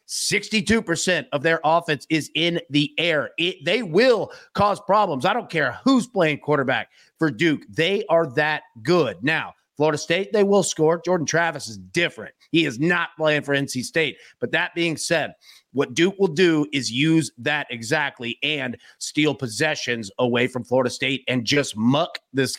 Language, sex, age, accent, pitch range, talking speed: English, male, 30-49, American, 135-180 Hz, 165 wpm